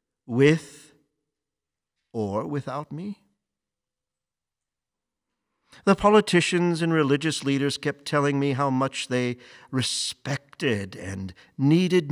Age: 50-69